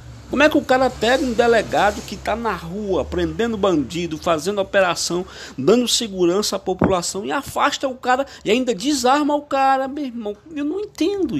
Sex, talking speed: male, 180 wpm